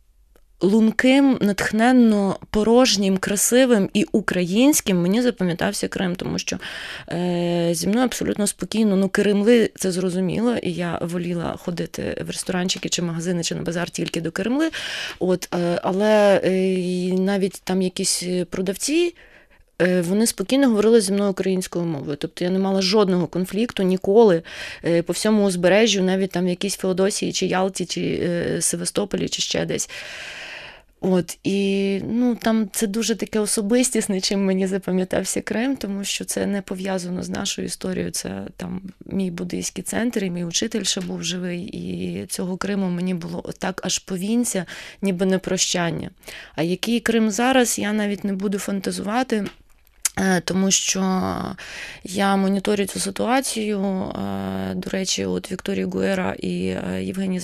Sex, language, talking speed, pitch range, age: female, English, 140 wpm, 175-210 Hz, 20-39